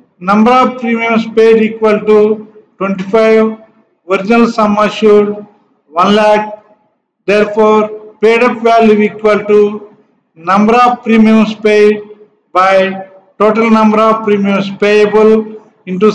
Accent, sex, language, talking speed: Indian, male, English, 110 wpm